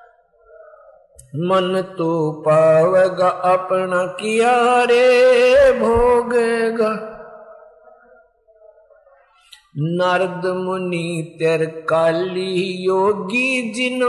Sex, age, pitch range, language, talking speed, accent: male, 50-69, 185-250 Hz, Hindi, 50 wpm, native